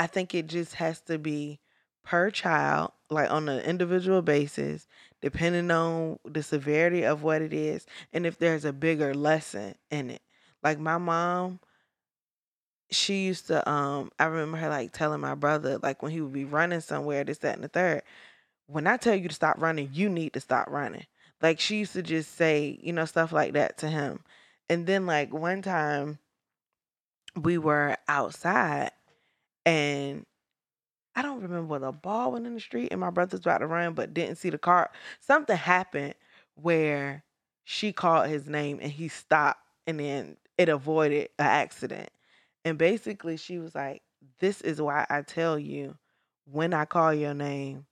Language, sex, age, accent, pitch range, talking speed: English, female, 20-39, American, 145-170 Hz, 180 wpm